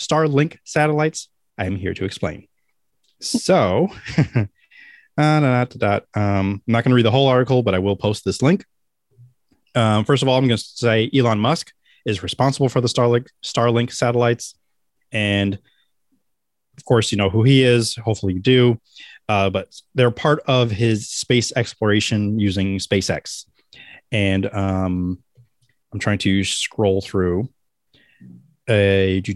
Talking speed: 140 wpm